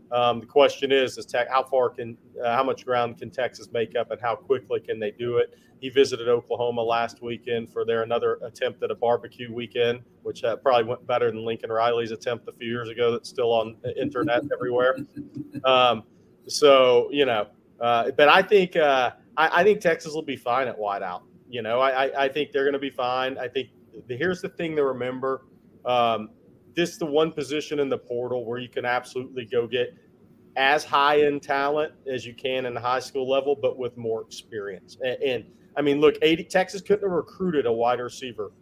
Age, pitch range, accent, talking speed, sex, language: 40-59, 120-170 Hz, American, 210 wpm, male, English